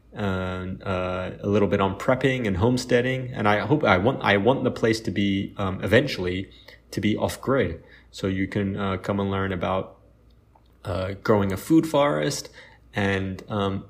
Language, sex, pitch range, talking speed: English, male, 100-125 Hz, 175 wpm